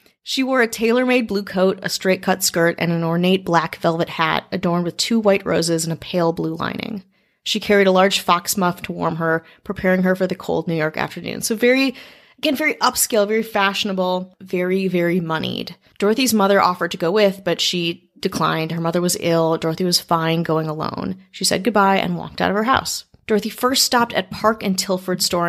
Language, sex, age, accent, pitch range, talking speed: English, female, 30-49, American, 165-205 Hz, 205 wpm